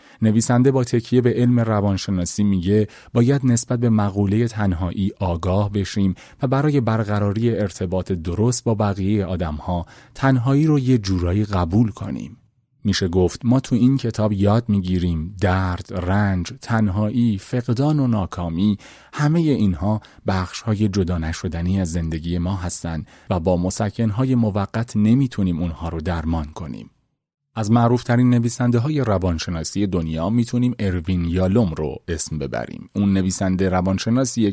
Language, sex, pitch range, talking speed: Persian, male, 90-120 Hz, 140 wpm